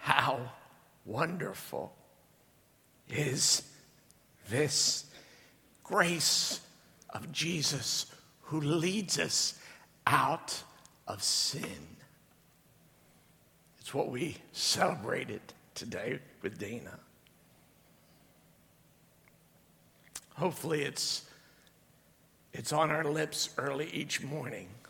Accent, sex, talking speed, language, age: American, male, 70 wpm, English, 60-79